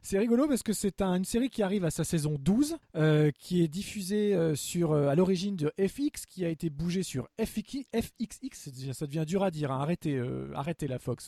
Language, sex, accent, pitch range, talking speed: French, male, French, 155-215 Hz, 230 wpm